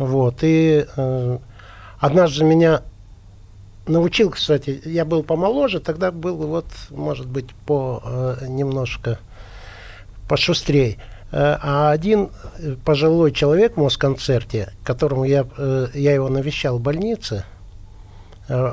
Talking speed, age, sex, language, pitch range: 110 wpm, 50-69, male, Russian, 110-155 Hz